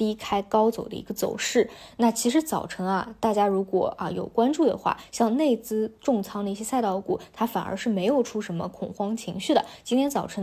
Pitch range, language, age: 190-230 Hz, Chinese, 20-39